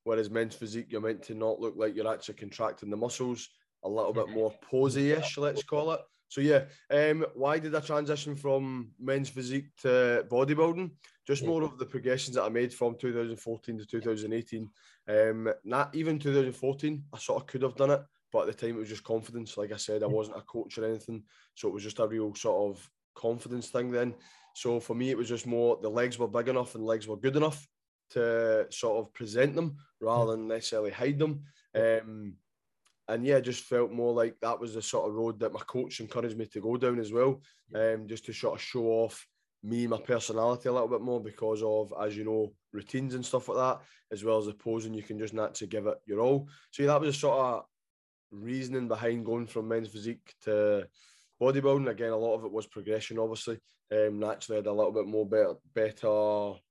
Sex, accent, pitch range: male, British, 110-130 Hz